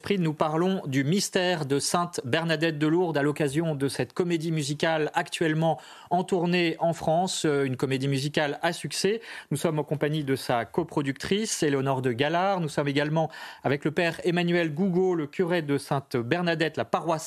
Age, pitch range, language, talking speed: 30-49, 135-175 Hz, French, 165 wpm